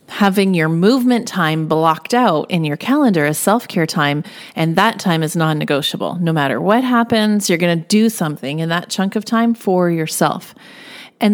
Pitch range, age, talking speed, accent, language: 170-220 Hz, 30-49, 180 wpm, American, English